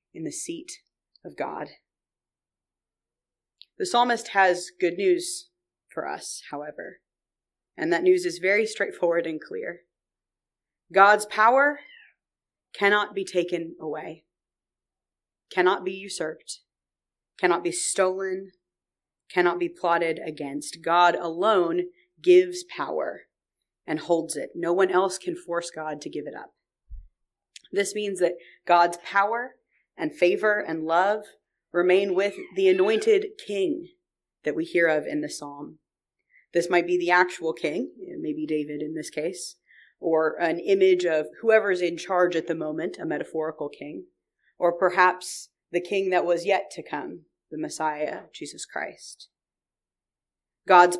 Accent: American